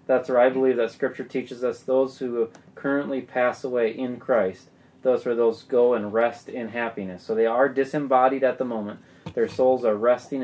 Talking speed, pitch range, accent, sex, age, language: 190 wpm, 115-135 Hz, American, male, 20-39, English